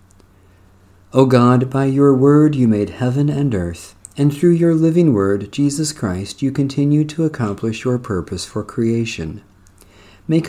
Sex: male